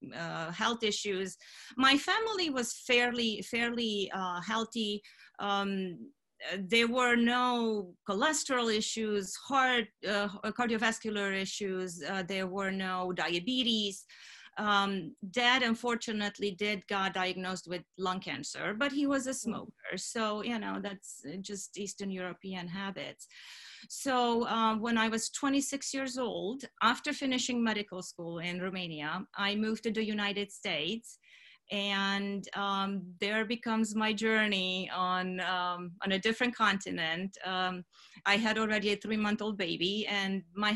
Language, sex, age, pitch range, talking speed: English, female, 30-49, 190-230 Hz, 135 wpm